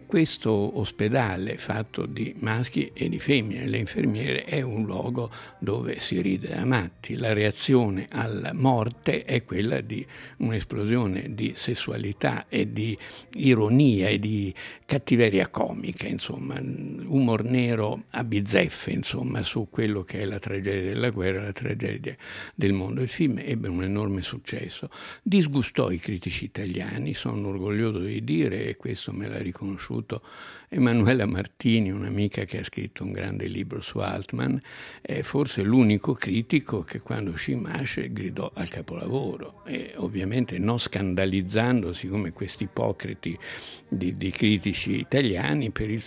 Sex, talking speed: male, 140 wpm